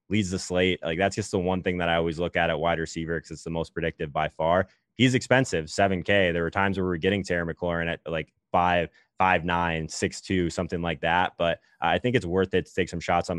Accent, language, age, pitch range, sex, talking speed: American, English, 20-39, 85-95 Hz, male, 255 wpm